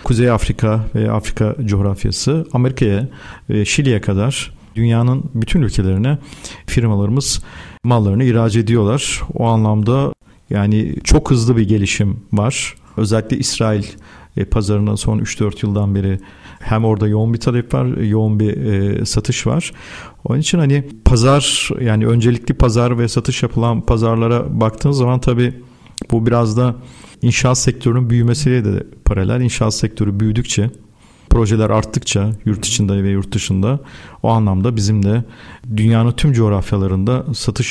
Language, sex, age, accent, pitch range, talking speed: Turkish, male, 50-69, native, 105-125 Hz, 125 wpm